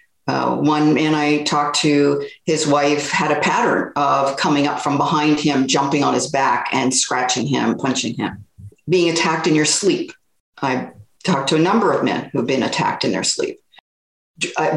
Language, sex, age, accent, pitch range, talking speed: English, female, 50-69, American, 145-180 Hz, 185 wpm